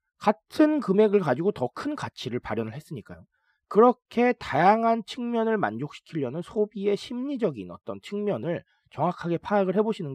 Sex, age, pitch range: male, 30-49, 145-230 Hz